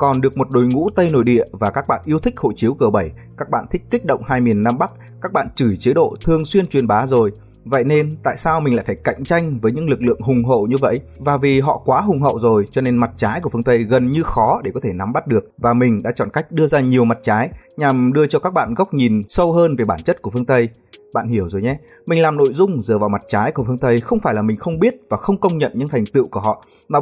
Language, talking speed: Vietnamese, 295 wpm